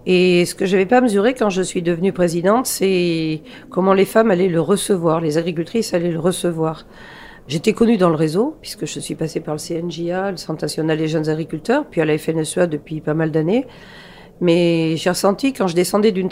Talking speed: 210 wpm